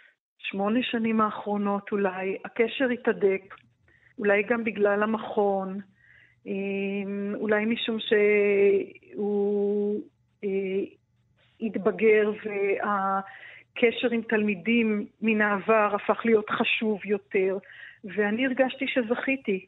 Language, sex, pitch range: Hebrew, female, 200-230 Hz